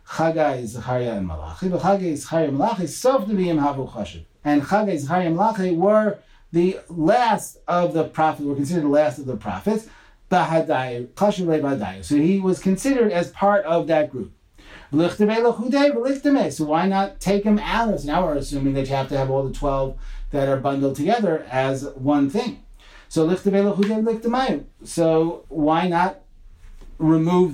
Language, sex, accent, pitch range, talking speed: English, male, American, 140-195 Hz, 155 wpm